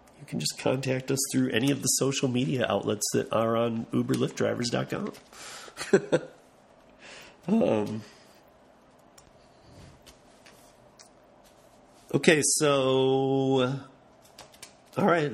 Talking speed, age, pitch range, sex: 80 wpm, 40-59, 115-140 Hz, male